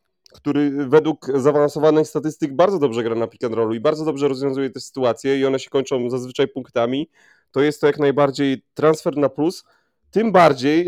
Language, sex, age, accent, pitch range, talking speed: Polish, male, 30-49, native, 135-160 Hz, 180 wpm